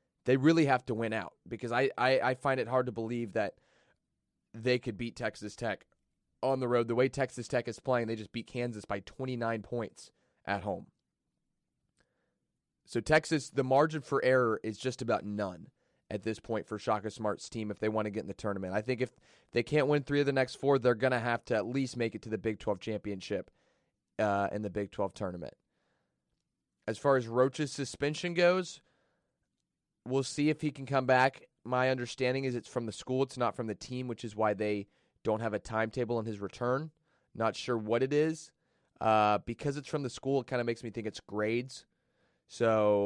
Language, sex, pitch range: English, male, 110-130 Hz